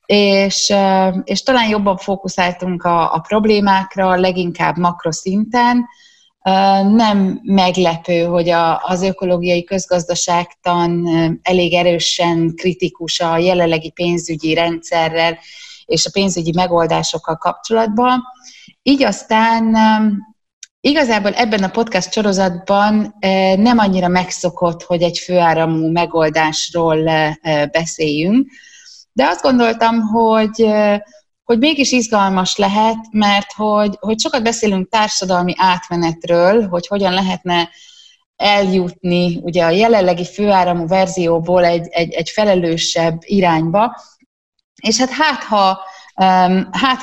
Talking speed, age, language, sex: 95 wpm, 30-49, Hungarian, female